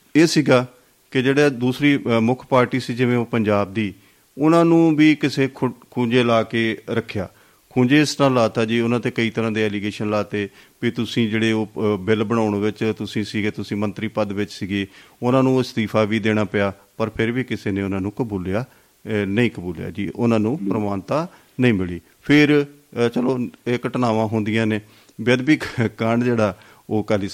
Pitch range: 105-130 Hz